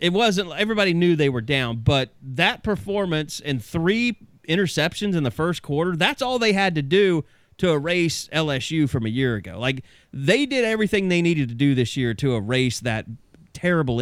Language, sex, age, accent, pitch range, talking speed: English, male, 30-49, American, 130-190 Hz, 190 wpm